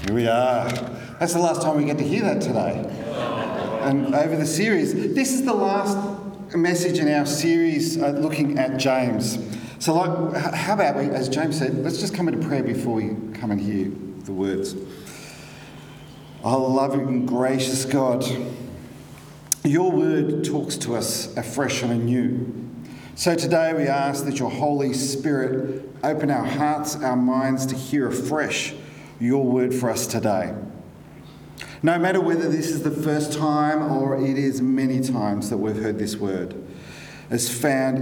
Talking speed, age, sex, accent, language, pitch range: 165 wpm, 40-59, male, Australian, English, 125-155 Hz